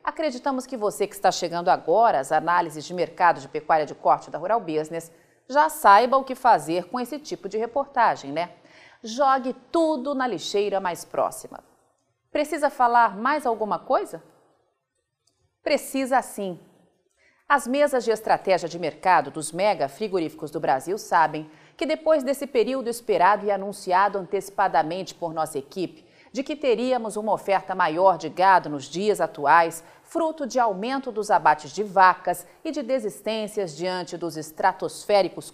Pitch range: 170-255 Hz